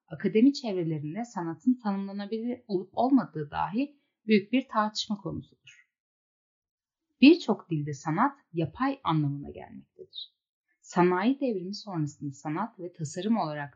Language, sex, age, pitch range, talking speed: Turkish, female, 10-29, 160-225 Hz, 105 wpm